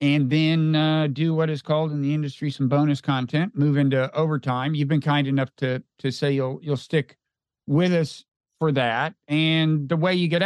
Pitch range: 130-155 Hz